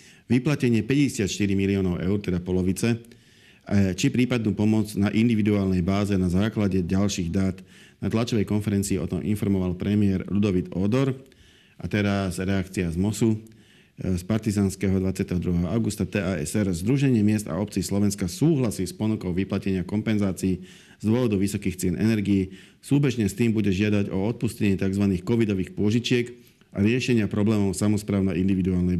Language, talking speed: Slovak, 135 wpm